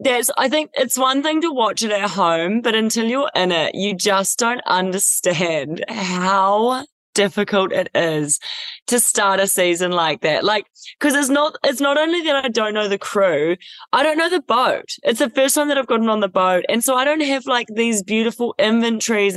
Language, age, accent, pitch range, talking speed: English, 20-39, Australian, 195-260 Hz, 210 wpm